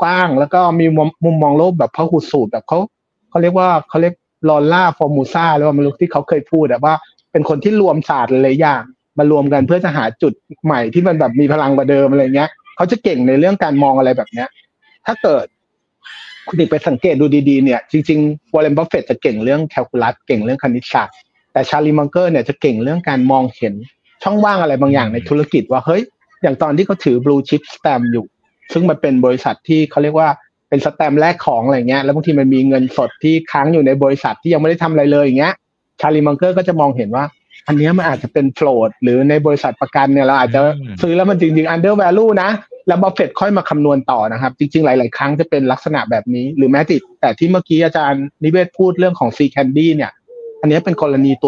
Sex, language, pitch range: male, Thai, 140-170 Hz